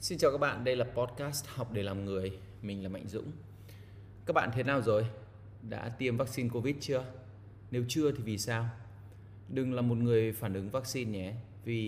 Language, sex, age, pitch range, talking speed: Vietnamese, male, 20-39, 100-120 Hz, 195 wpm